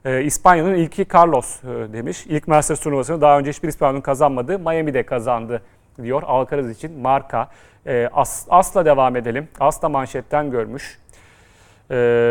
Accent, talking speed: native, 140 wpm